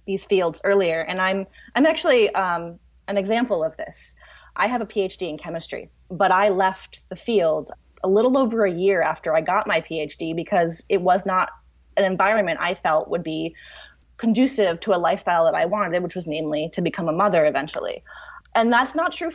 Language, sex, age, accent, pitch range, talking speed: English, female, 20-39, American, 175-215 Hz, 190 wpm